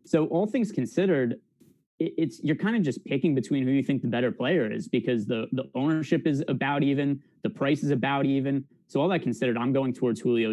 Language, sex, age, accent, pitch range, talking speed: English, male, 20-39, American, 115-150 Hz, 215 wpm